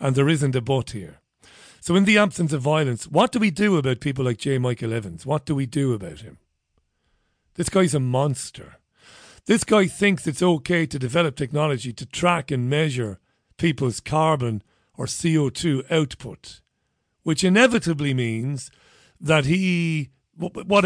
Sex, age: male, 40-59